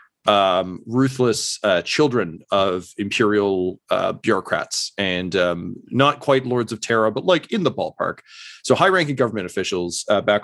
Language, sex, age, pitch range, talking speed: English, male, 30-49, 100-125 Hz, 150 wpm